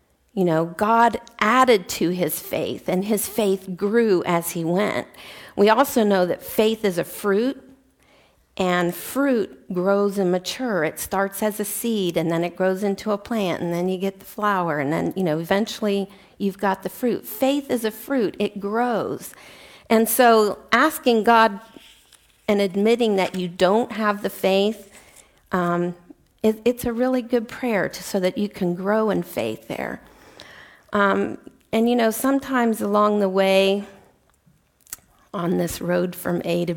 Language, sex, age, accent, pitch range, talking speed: English, female, 50-69, American, 180-225 Hz, 165 wpm